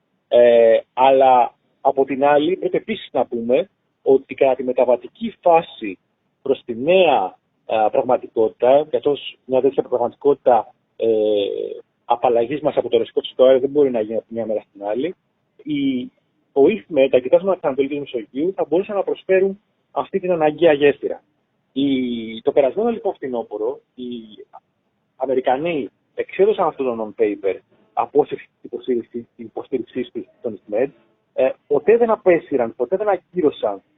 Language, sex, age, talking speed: Greek, male, 30-49, 140 wpm